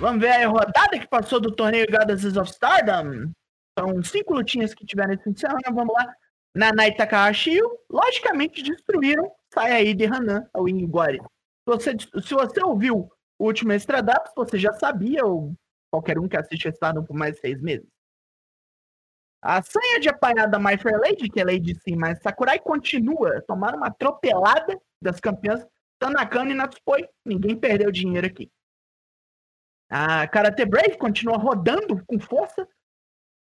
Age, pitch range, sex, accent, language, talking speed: 20-39, 200-285 Hz, male, Brazilian, Portuguese, 150 wpm